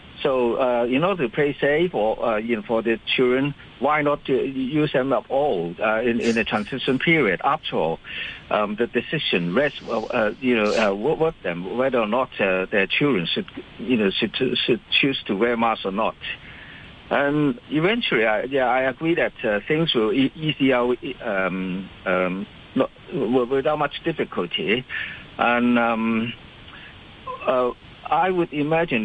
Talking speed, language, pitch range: 165 wpm, English, 110-145 Hz